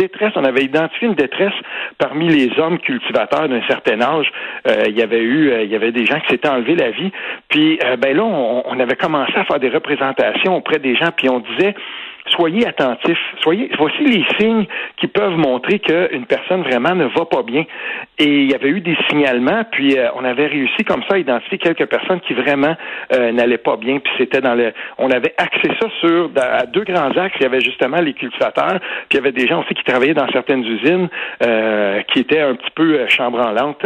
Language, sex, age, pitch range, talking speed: French, male, 60-79, 125-175 Hz, 220 wpm